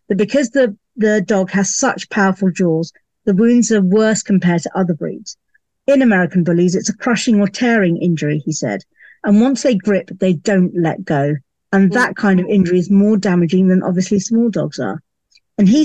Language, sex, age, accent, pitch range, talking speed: English, female, 50-69, British, 185-230 Hz, 195 wpm